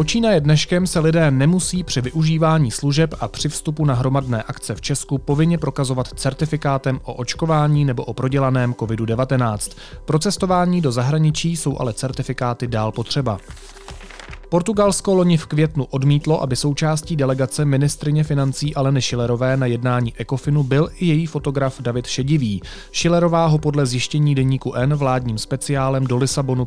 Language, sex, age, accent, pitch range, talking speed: Czech, male, 30-49, native, 125-155 Hz, 145 wpm